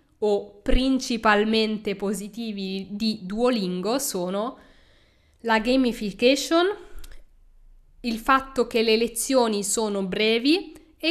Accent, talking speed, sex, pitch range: native, 85 wpm, female, 190-255 Hz